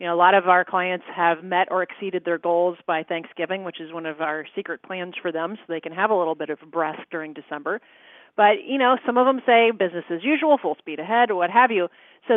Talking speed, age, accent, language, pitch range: 255 wpm, 30-49, American, English, 175-230 Hz